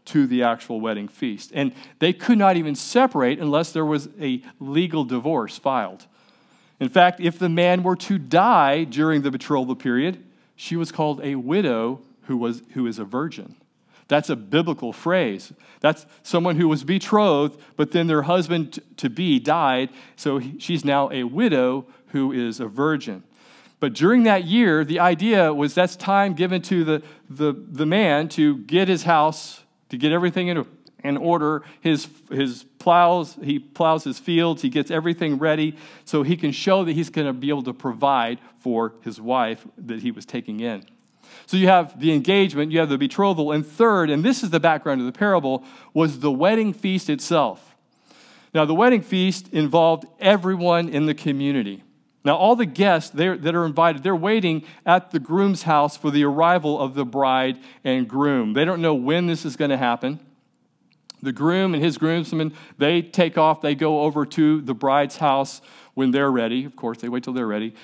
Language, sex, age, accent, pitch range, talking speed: English, male, 40-59, American, 140-175 Hz, 185 wpm